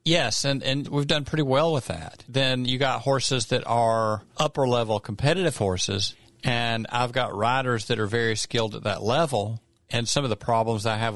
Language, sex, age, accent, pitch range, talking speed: English, male, 50-69, American, 105-125 Hz, 200 wpm